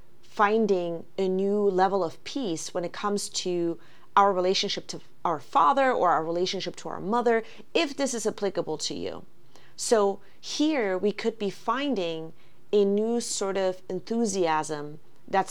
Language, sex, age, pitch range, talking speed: English, female, 30-49, 170-205 Hz, 150 wpm